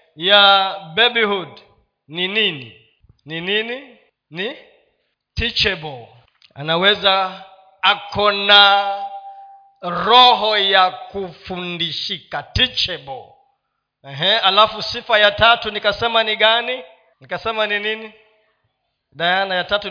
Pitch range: 170-220 Hz